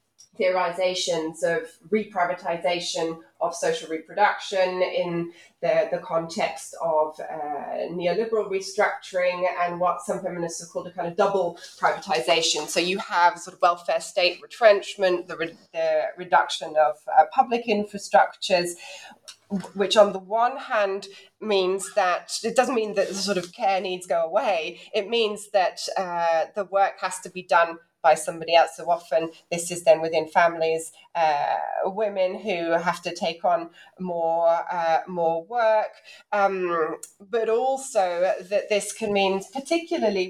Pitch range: 175-215 Hz